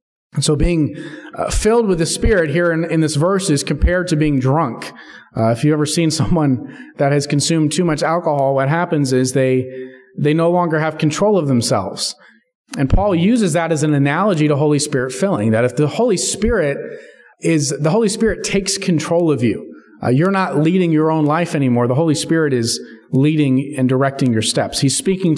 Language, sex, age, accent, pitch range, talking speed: English, male, 30-49, American, 135-170 Hz, 200 wpm